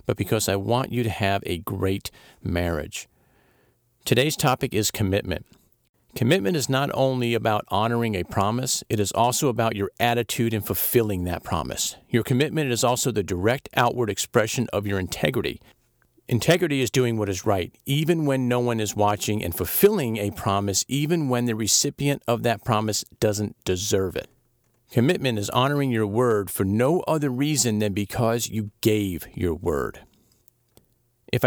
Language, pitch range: English, 100-130 Hz